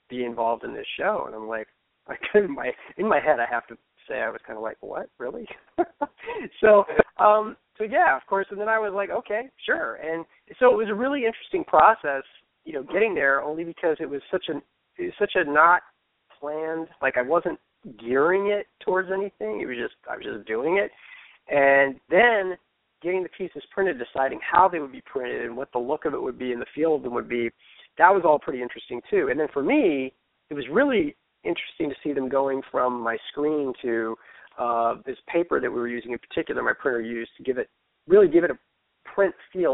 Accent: American